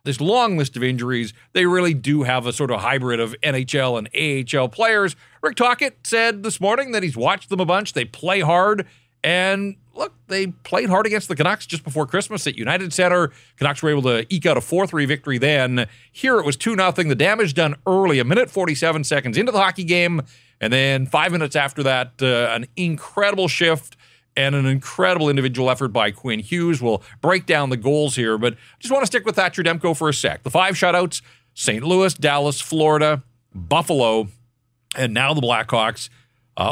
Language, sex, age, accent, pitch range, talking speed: English, male, 40-59, American, 125-175 Hz, 200 wpm